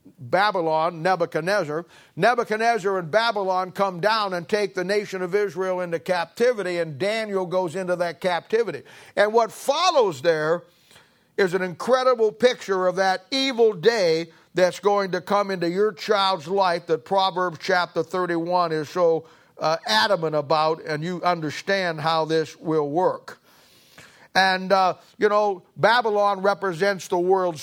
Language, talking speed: English, 140 wpm